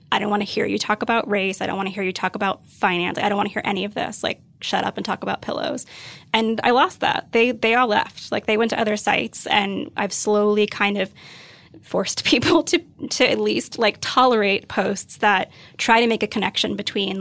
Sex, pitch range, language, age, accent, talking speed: female, 195-225 Hz, English, 10-29, American, 235 wpm